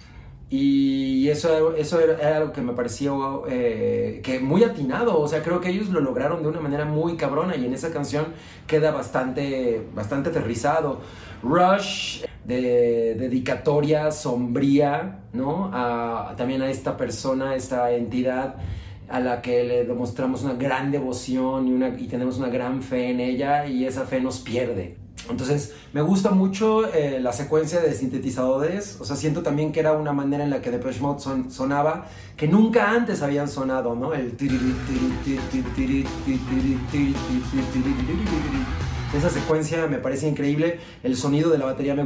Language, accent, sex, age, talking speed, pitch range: Spanish, Mexican, male, 30-49, 155 wpm, 125-155 Hz